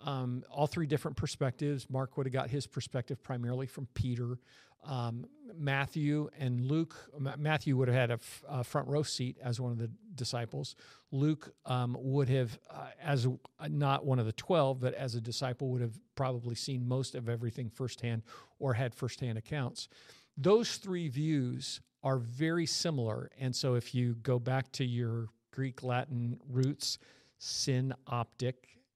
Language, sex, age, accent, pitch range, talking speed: English, male, 50-69, American, 120-145 Hz, 165 wpm